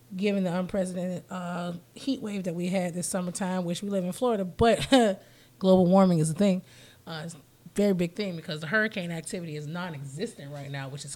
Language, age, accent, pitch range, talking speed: English, 20-39, American, 165-205 Hz, 205 wpm